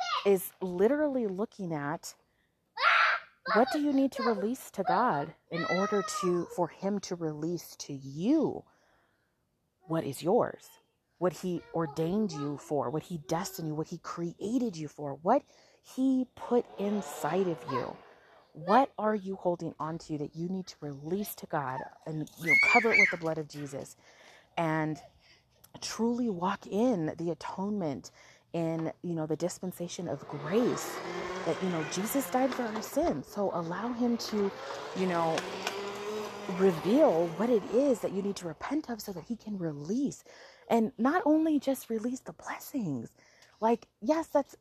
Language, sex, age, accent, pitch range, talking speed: English, female, 30-49, American, 165-230 Hz, 160 wpm